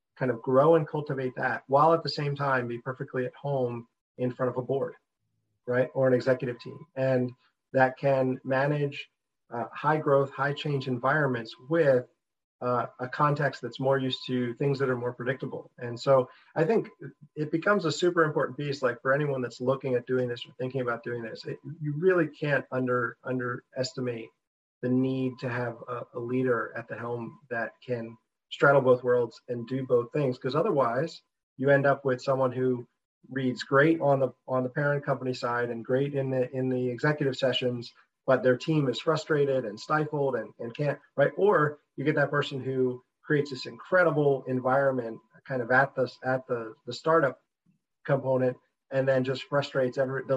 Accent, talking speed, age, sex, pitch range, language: American, 185 wpm, 40-59, male, 125-145 Hz, English